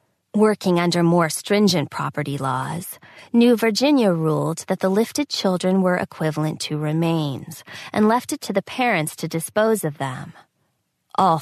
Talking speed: 145 wpm